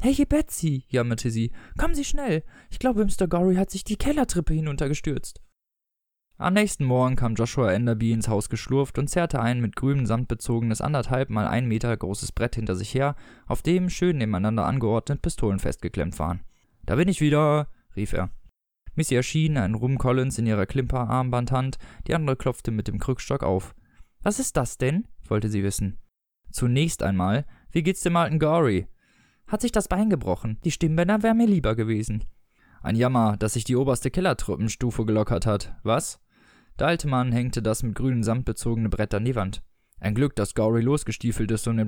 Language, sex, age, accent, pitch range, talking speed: German, male, 20-39, German, 110-155 Hz, 180 wpm